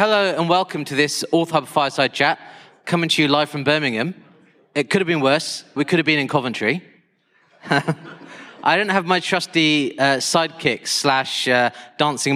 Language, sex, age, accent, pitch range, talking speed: English, male, 30-49, British, 130-170 Hz, 170 wpm